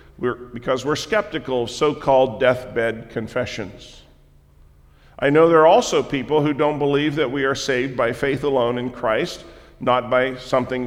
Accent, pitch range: American, 120-155 Hz